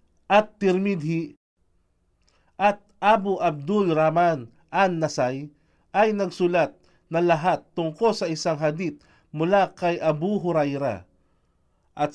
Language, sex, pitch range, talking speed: Filipino, male, 145-195 Hz, 100 wpm